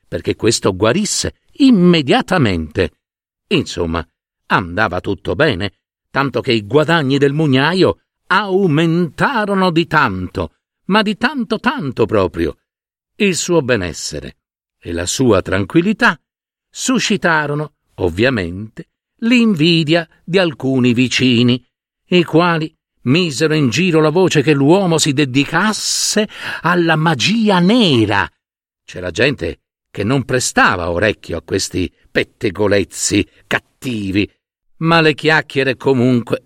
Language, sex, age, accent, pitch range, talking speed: Italian, male, 60-79, native, 105-170 Hz, 105 wpm